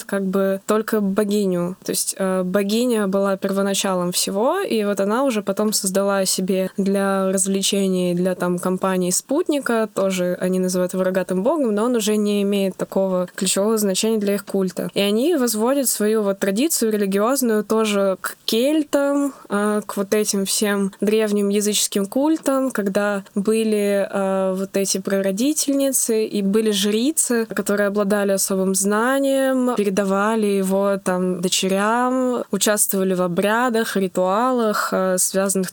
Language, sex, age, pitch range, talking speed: Russian, female, 20-39, 195-220 Hz, 135 wpm